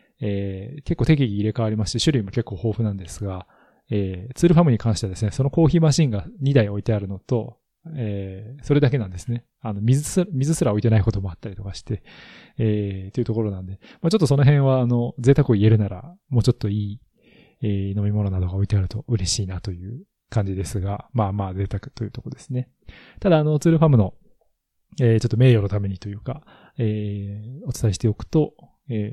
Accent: native